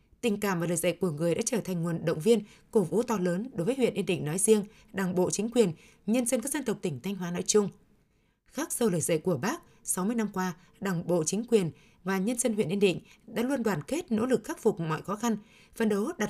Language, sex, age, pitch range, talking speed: Vietnamese, female, 20-39, 180-230 Hz, 260 wpm